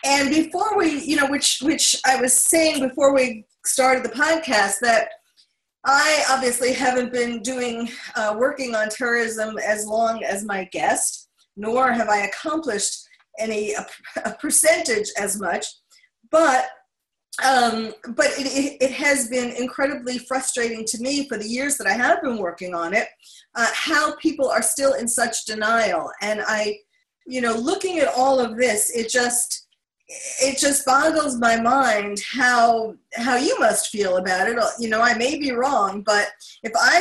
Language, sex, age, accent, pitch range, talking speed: English, female, 40-59, American, 225-300 Hz, 165 wpm